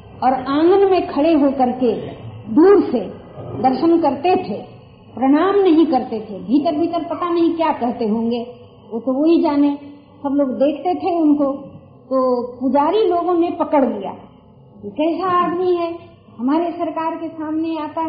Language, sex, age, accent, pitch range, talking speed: Hindi, female, 50-69, native, 250-335 Hz, 150 wpm